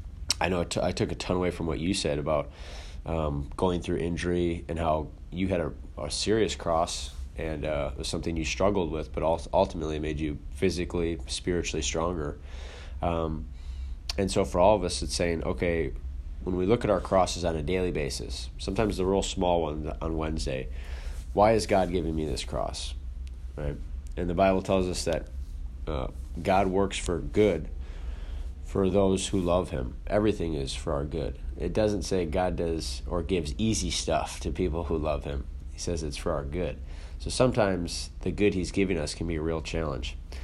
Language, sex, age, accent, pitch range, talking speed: English, male, 20-39, American, 70-90 Hz, 190 wpm